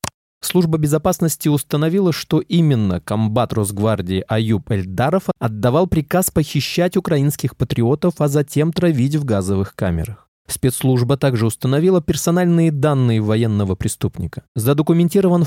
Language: Russian